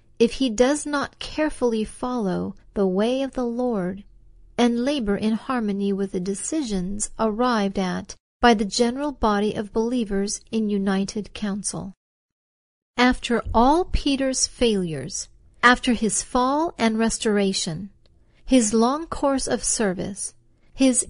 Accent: American